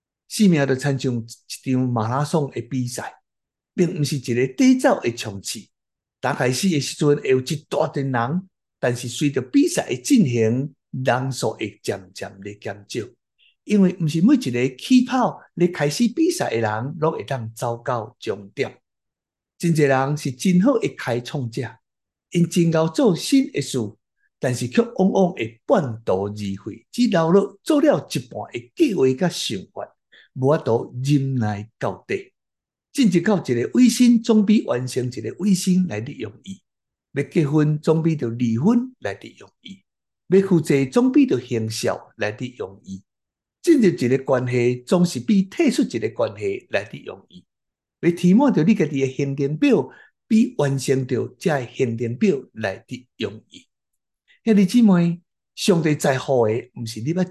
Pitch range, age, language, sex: 125-195 Hz, 60-79, Chinese, male